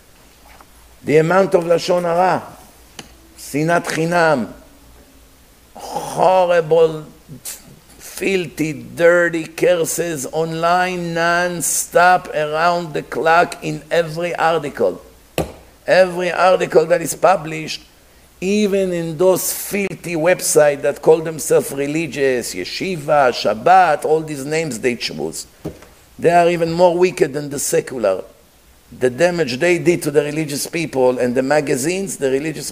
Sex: male